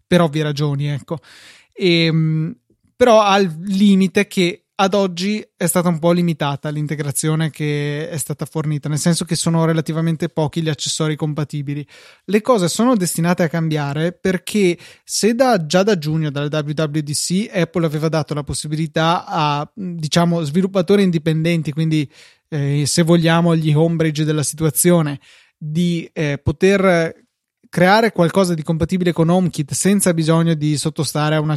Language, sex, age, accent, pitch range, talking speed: Italian, male, 20-39, native, 155-175 Hz, 145 wpm